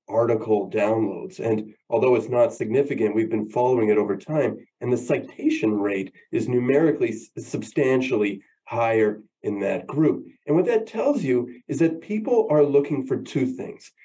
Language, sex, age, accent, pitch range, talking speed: English, male, 30-49, American, 110-155 Hz, 160 wpm